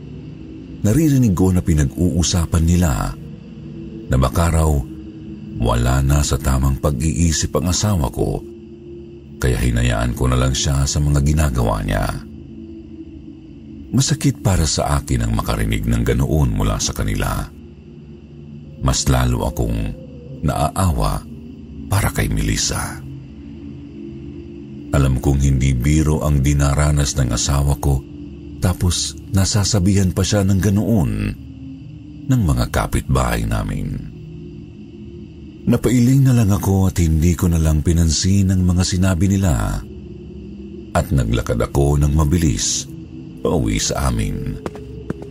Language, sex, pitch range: Filipino, male, 70-95 Hz